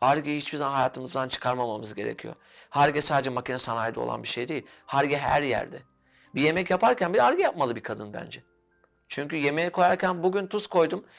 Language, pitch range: Turkish, 140-195 Hz